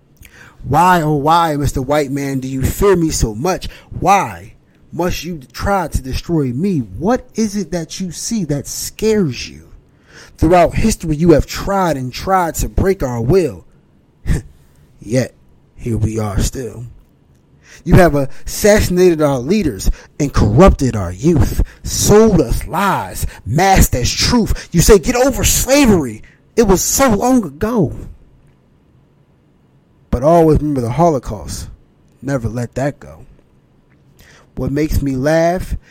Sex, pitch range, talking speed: male, 120-170 Hz, 135 wpm